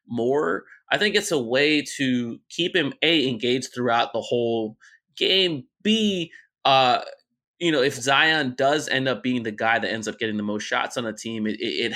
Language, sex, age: English, male, 20-39